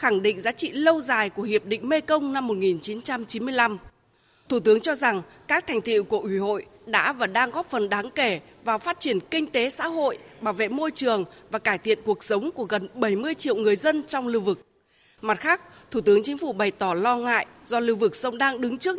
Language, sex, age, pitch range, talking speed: Vietnamese, female, 20-39, 215-305 Hz, 230 wpm